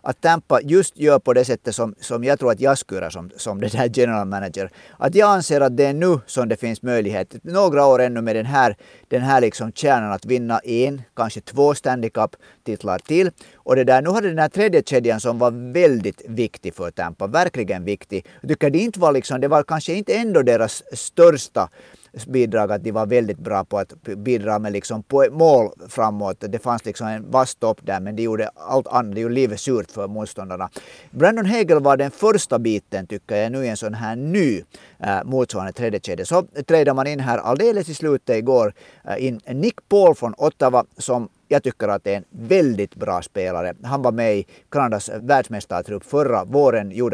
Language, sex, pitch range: Swedish, male, 110-145 Hz